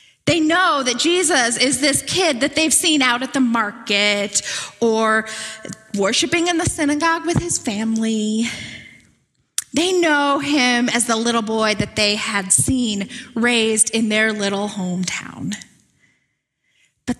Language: English